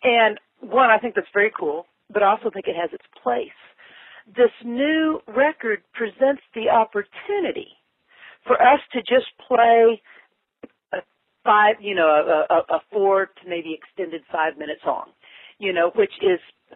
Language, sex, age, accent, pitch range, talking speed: English, female, 50-69, American, 170-255 Hz, 155 wpm